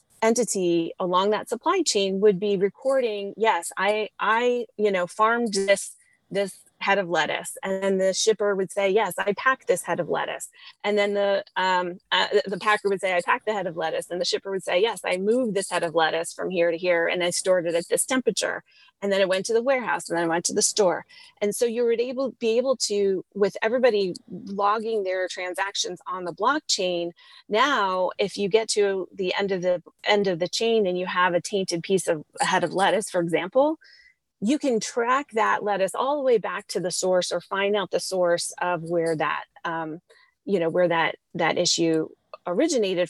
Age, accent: 30-49, American